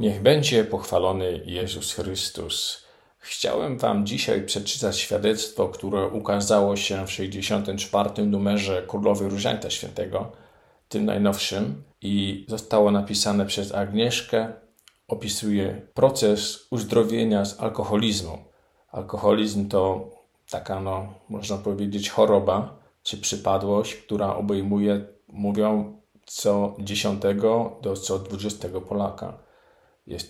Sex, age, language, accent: male, 50-69, Polish, native